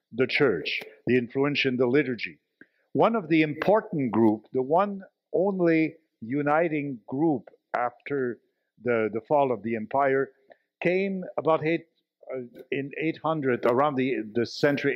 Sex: male